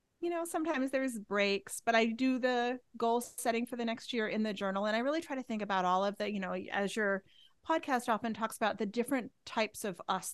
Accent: American